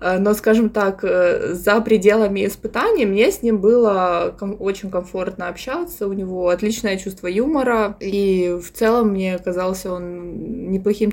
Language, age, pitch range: Russian, 20-39, 180-215 Hz